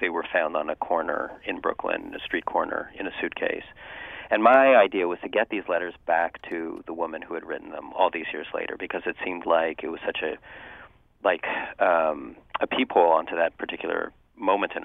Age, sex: 40-59, male